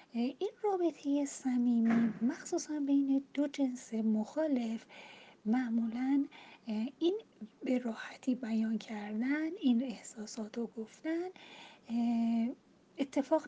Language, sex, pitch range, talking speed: Persian, female, 220-305 Hz, 85 wpm